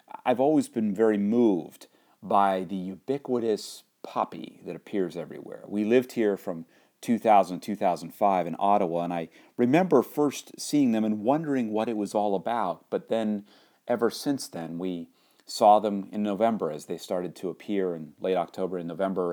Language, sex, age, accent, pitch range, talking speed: English, male, 40-59, American, 90-105 Hz, 170 wpm